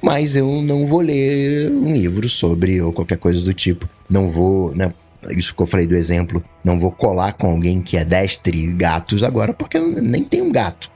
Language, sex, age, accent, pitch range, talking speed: Portuguese, male, 20-39, Brazilian, 85-110 Hz, 210 wpm